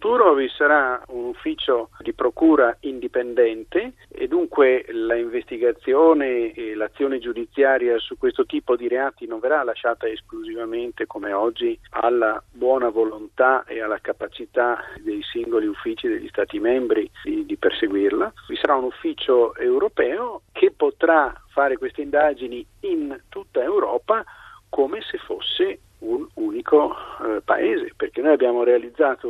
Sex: male